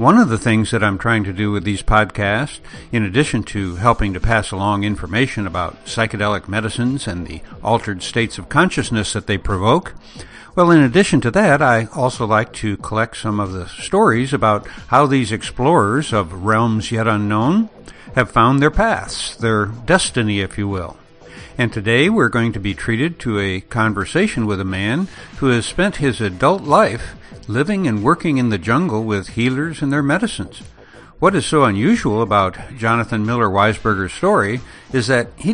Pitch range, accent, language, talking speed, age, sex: 105-140 Hz, American, English, 175 wpm, 60-79, male